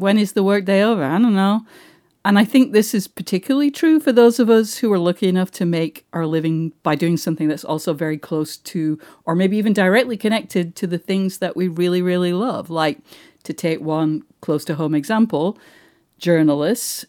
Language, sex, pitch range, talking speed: English, female, 165-215 Hz, 200 wpm